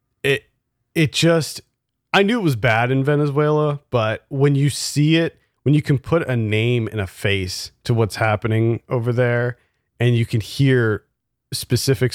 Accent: American